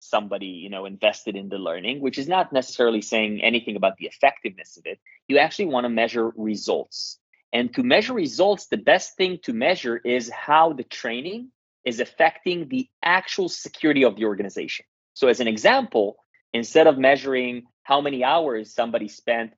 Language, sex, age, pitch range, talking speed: English, male, 30-49, 120-175 Hz, 175 wpm